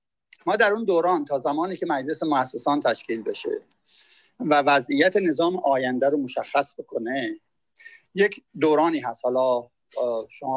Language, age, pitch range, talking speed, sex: Persian, 50-69, 140-215 Hz, 130 wpm, male